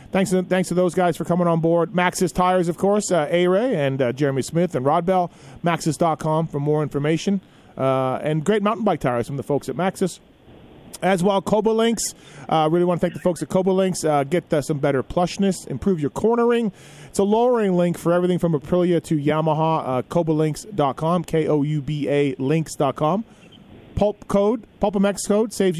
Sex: male